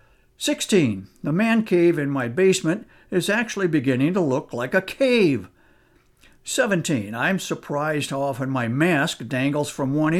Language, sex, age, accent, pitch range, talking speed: English, male, 60-79, American, 135-185 Hz, 145 wpm